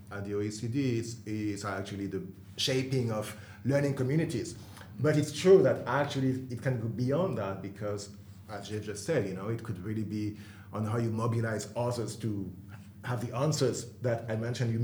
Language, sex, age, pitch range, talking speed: English, male, 30-49, 105-125 Hz, 180 wpm